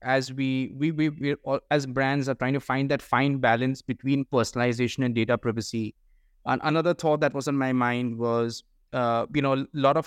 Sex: male